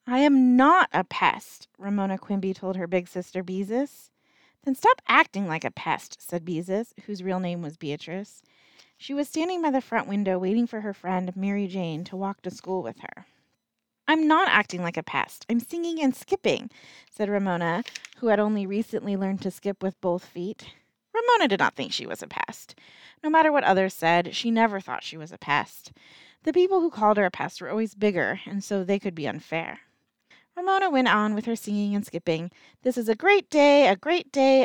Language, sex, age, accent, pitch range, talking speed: English, female, 30-49, American, 180-235 Hz, 205 wpm